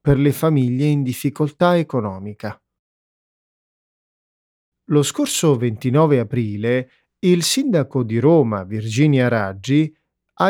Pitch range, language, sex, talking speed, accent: 115-165 Hz, Italian, male, 95 wpm, native